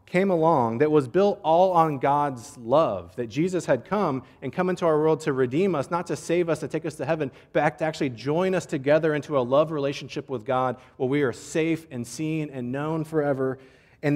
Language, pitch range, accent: English, 125-160 Hz, American